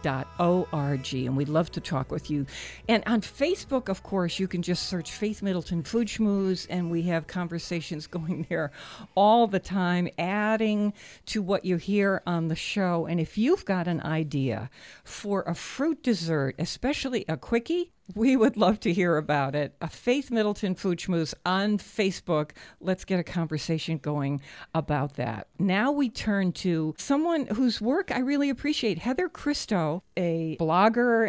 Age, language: 60-79, English